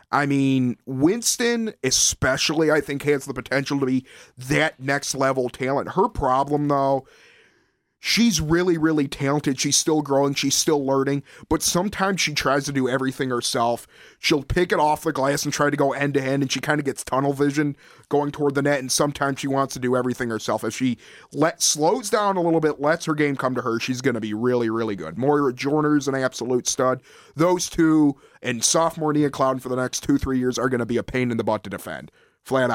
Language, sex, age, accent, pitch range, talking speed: English, male, 30-49, American, 125-150 Hz, 215 wpm